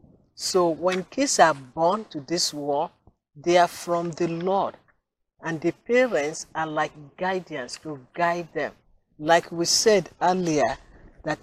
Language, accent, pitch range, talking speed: English, Nigerian, 155-195 Hz, 140 wpm